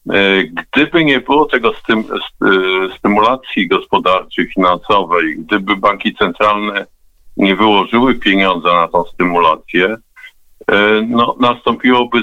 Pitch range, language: 100-125 Hz, Polish